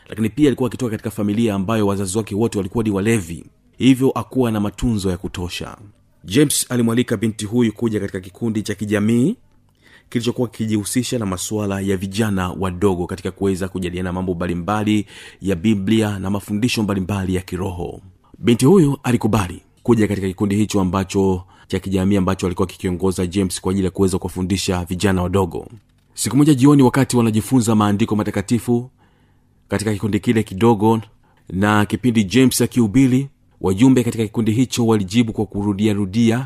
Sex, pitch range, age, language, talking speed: male, 95-120 Hz, 30-49, Swahili, 150 wpm